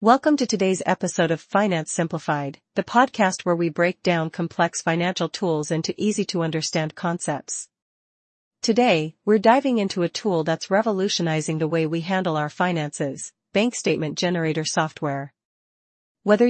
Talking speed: 145 wpm